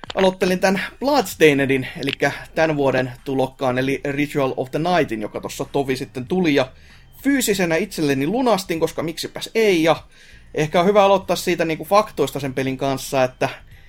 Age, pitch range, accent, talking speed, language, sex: 30-49, 135-165 Hz, native, 160 wpm, Finnish, male